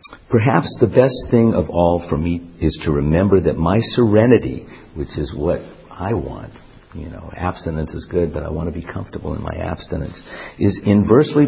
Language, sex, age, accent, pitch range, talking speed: English, male, 50-69, American, 80-105 Hz, 185 wpm